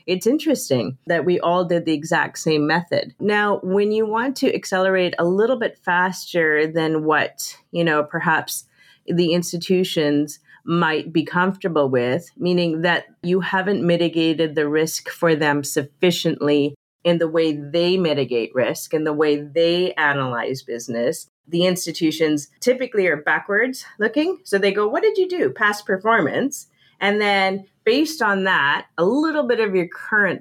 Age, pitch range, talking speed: 30-49, 165-235 Hz, 155 wpm